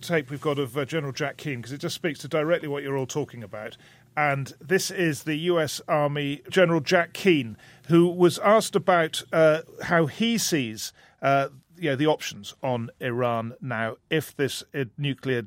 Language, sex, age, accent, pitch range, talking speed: English, male, 50-69, British, 115-155 Hz, 175 wpm